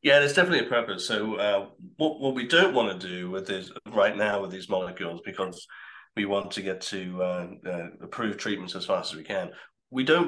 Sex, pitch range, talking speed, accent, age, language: male, 85-100 Hz, 220 wpm, British, 40-59, English